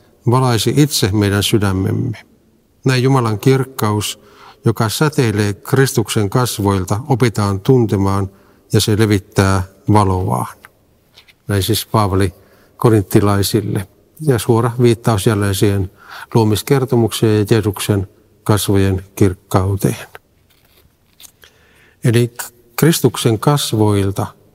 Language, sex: Finnish, male